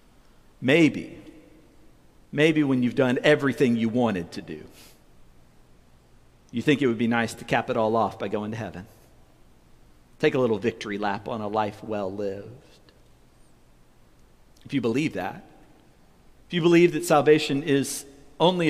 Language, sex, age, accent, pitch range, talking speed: English, male, 50-69, American, 95-135 Hz, 150 wpm